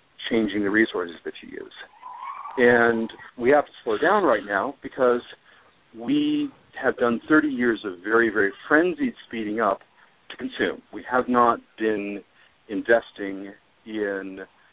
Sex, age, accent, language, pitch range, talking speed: male, 50-69, American, English, 95-120 Hz, 140 wpm